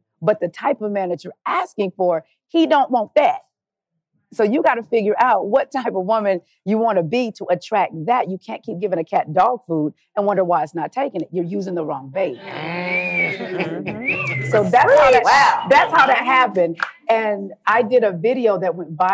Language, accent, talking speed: English, American, 205 wpm